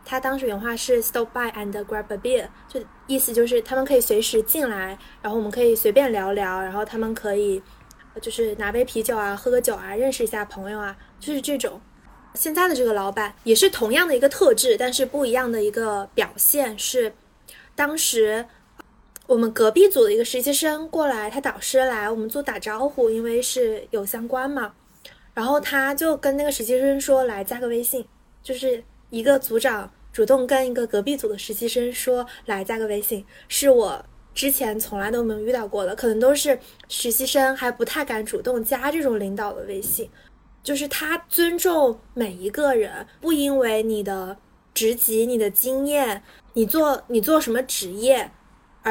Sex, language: female, Chinese